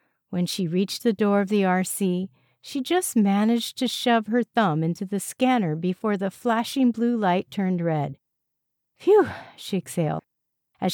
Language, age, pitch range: English, 50-69, 150-205 Hz